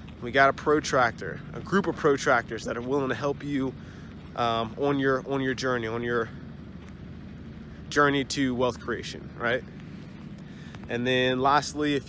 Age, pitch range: 20-39, 120-140 Hz